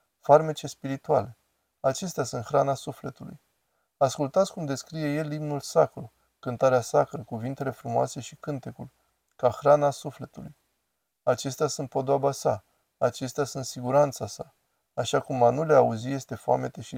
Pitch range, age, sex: 120-145 Hz, 20-39, male